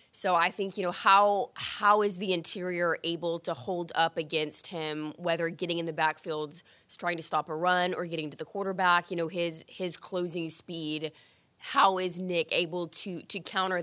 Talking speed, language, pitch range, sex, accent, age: 190 wpm, English, 160-185 Hz, female, American, 20-39